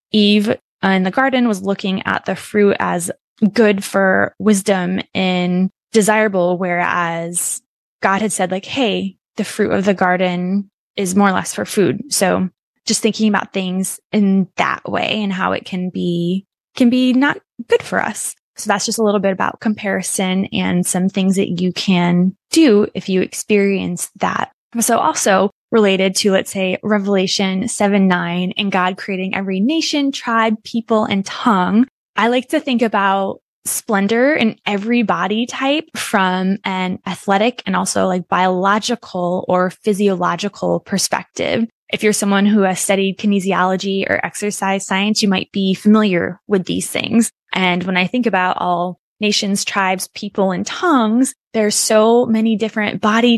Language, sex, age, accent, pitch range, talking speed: English, female, 20-39, American, 190-220 Hz, 160 wpm